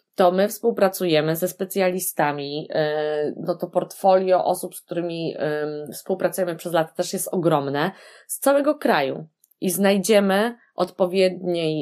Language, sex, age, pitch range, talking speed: Polish, female, 20-39, 150-190 Hz, 115 wpm